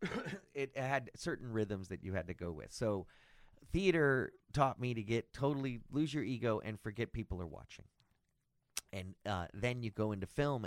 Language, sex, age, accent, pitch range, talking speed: English, male, 30-49, American, 85-120 Hz, 180 wpm